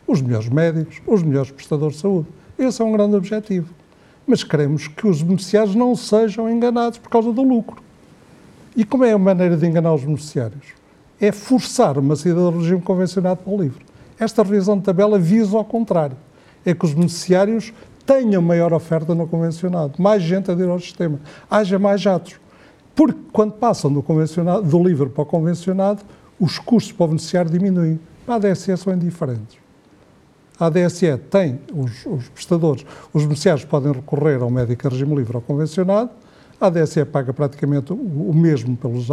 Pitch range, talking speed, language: 150-200 Hz, 175 wpm, Portuguese